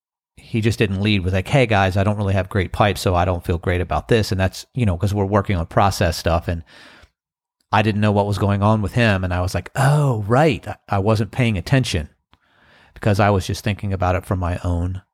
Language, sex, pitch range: English, male, 95-120 Hz